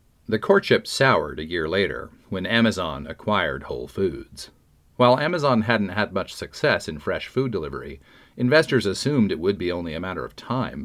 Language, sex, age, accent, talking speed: English, male, 40-59, American, 170 wpm